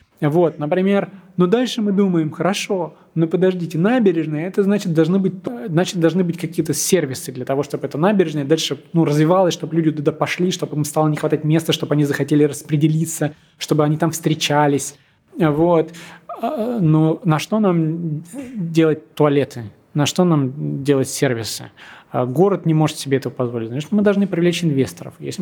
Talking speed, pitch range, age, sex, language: 165 wpm, 140-170 Hz, 20-39, male, Russian